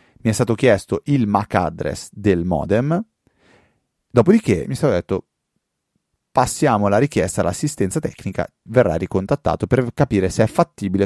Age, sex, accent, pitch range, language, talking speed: 30-49, male, native, 90-115 Hz, Italian, 140 wpm